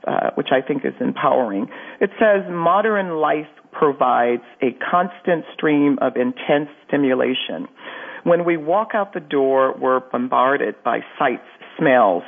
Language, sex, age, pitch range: English, female, 50-69, 130-175 Hz